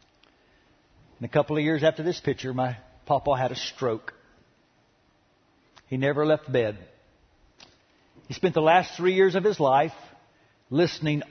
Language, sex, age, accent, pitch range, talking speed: English, male, 60-79, American, 115-155 Hz, 145 wpm